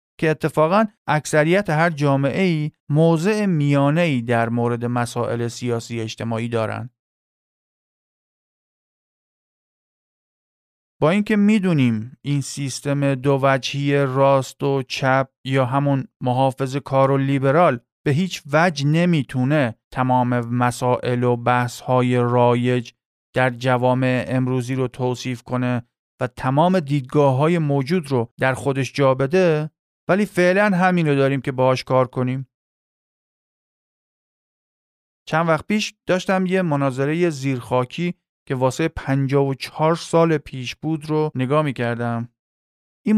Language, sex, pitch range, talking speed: Persian, male, 125-160 Hz, 115 wpm